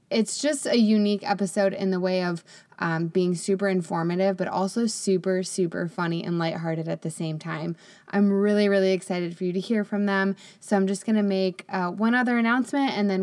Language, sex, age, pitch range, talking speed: English, female, 20-39, 180-205 Hz, 205 wpm